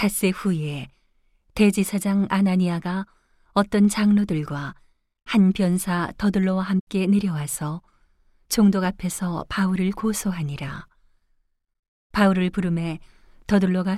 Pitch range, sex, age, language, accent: 150-200 Hz, female, 40-59, Korean, native